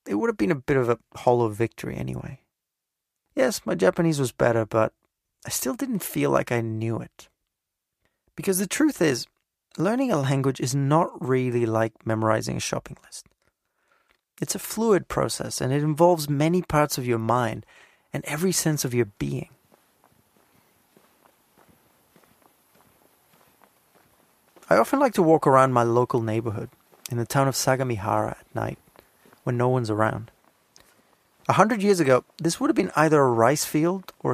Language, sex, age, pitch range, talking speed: English, male, 30-49, 115-170 Hz, 160 wpm